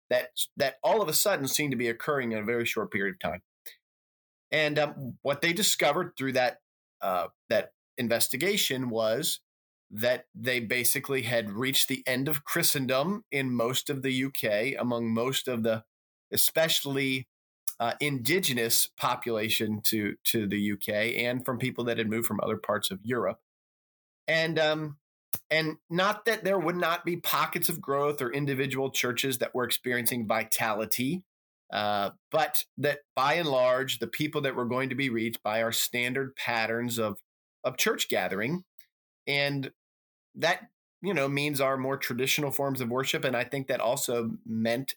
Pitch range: 115-140 Hz